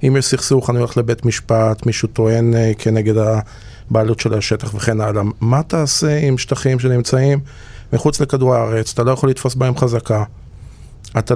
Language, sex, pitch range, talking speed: Hebrew, male, 115-145 Hz, 165 wpm